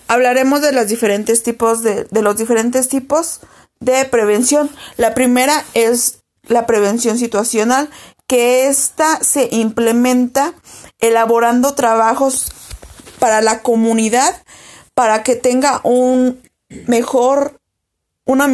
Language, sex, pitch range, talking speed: Spanish, female, 230-280 Hz, 105 wpm